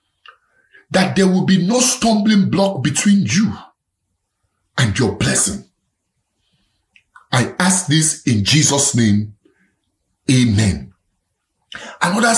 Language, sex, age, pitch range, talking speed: English, male, 50-69, 135-195 Hz, 95 wpm